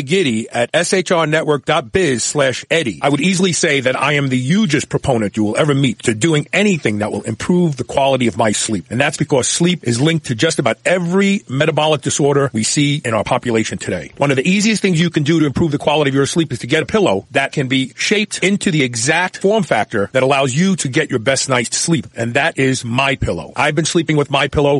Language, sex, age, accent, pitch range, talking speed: English, male, 40-59, American, 125-165 Hz, 230 wpm